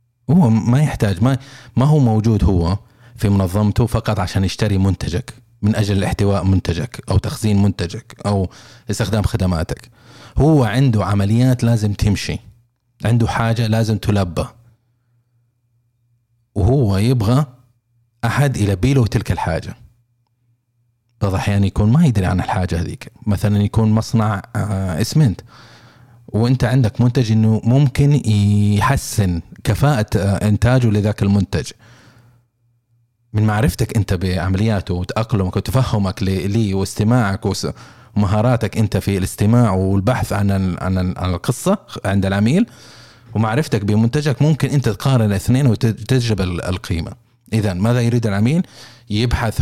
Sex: male